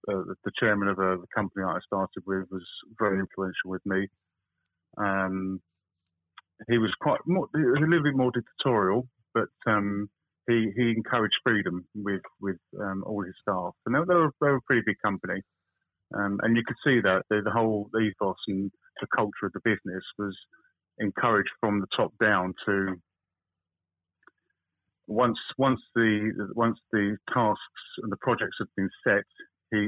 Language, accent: English, British